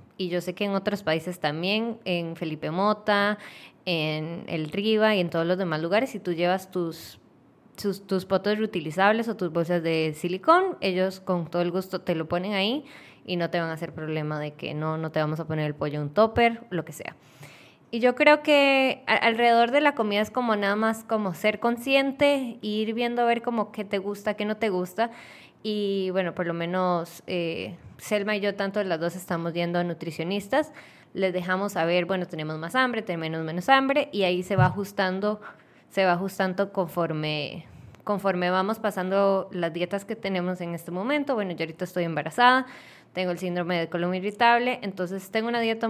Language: Spanish